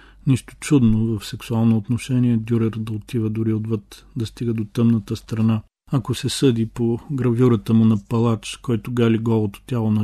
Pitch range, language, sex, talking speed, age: 110-120 Hz, Bulgarian, male, 165 wpm, 40-59